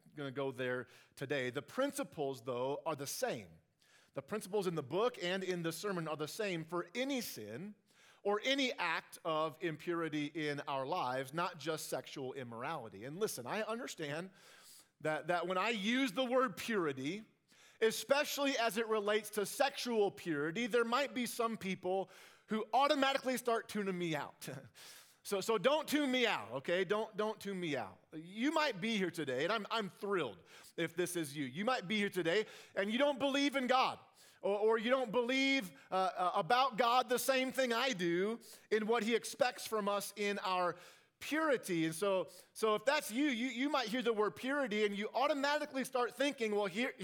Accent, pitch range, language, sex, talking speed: American, 175-255 Hz, English, male, 190 wpm